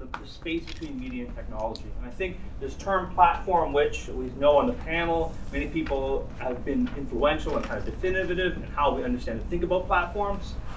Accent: American